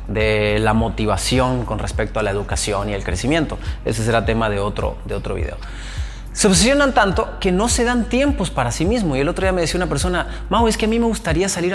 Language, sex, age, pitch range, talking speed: Spanish, male, 30-49, 110-160 Hz, 235 wpm